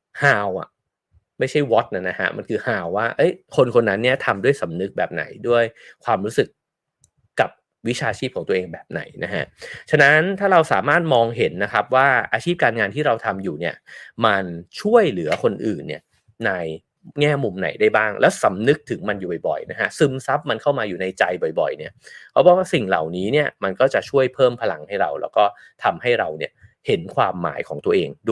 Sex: male